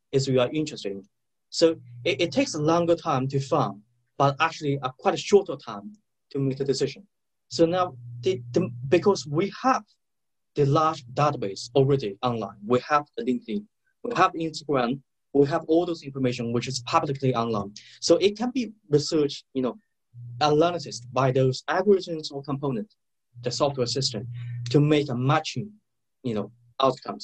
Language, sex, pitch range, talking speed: English, male, 125-165 Hz, 165 wpm